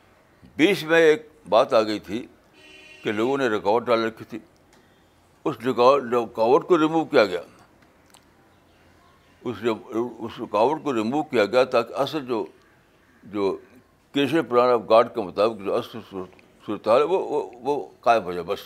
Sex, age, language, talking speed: male, 60-79, Urdu, 140 wpm